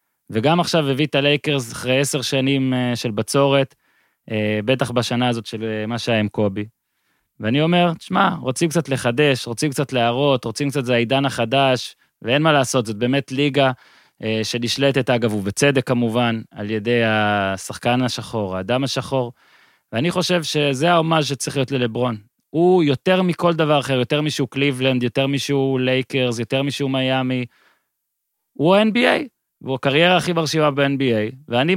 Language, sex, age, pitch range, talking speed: Hebrew, male, 20-39, 120-155 Hz, 145 wpm